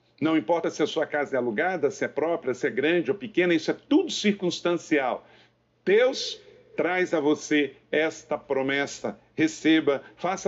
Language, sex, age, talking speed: Portuguese, male, 50-69, 160 wpm